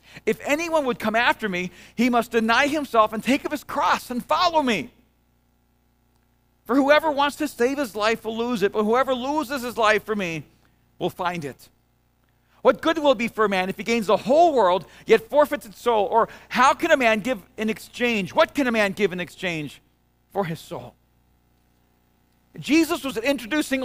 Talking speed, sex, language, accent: 190 wpm, male, English, American